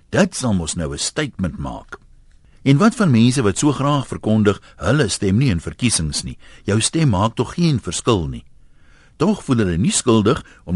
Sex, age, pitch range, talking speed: male, 60-79, 85-125 Hz, 195 wpm